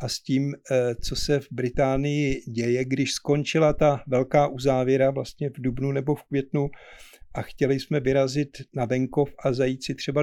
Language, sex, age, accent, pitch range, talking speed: Czech, male, 50-69, native, 130-145 Hz, 170 wpm